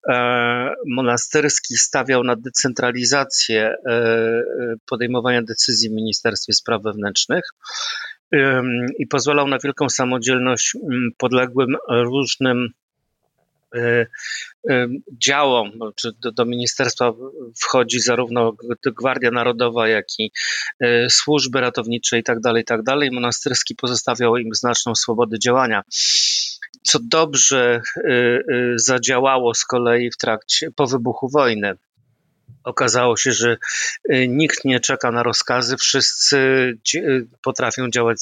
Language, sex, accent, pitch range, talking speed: Polish, male, native, 120-130 Hz, 90 wpm